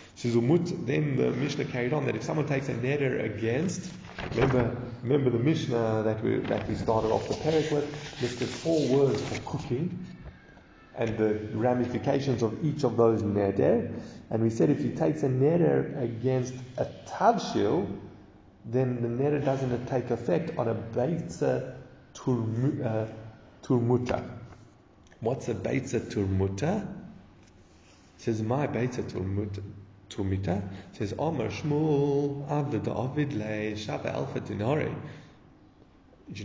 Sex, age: male, 30-49